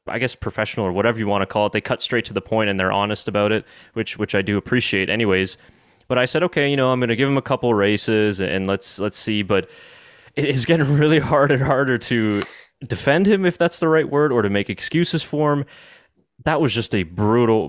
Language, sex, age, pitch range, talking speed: English, male, 20-39, 100-130 Hz, 250 wpm